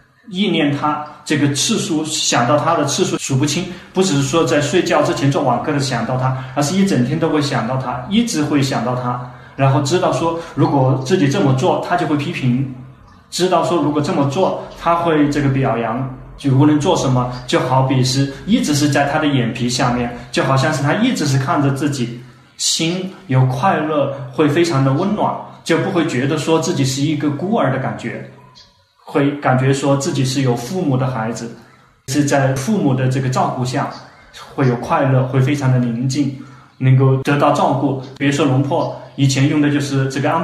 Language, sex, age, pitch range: Chinese, male, 20-39, 130-155 Hz